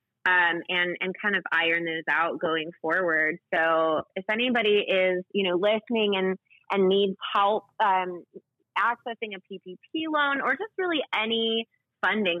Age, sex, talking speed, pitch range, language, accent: 20-39, female, 150 wpm, 180-225 Hz, English, American